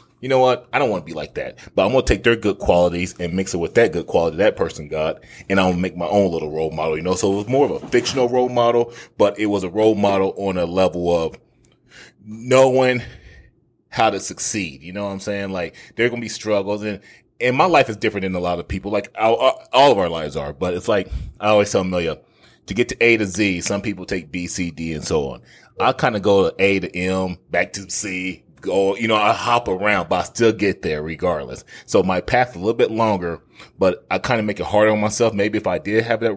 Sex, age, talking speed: male, 30-49, 260 wpm